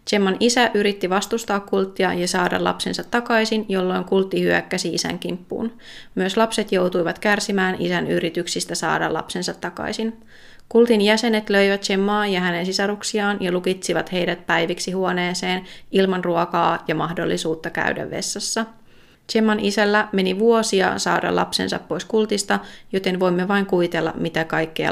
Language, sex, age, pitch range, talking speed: Finnish, female, 30-49, 180-220 Hz, 130 wpm